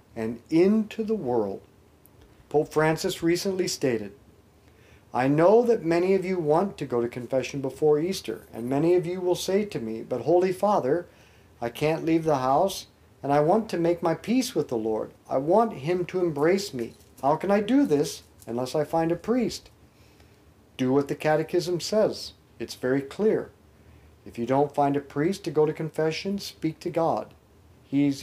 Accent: American